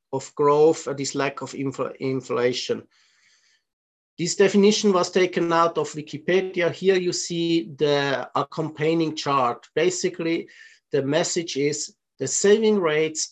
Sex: male